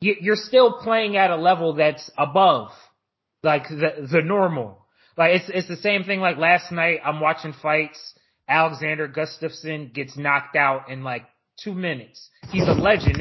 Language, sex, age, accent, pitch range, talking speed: English, male, 30-49, American, 145-185 Hz, 165 wpm